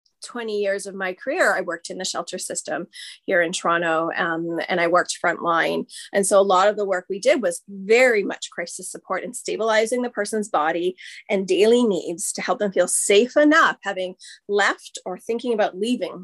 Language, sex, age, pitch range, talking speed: English, female, 30-49, 190-260 Hz, 195 wpm